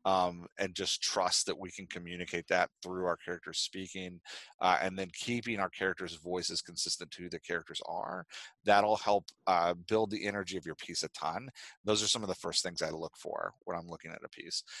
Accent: American